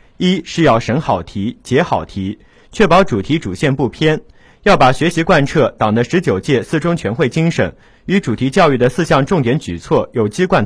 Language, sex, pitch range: Chinese, male, 120-175 Hz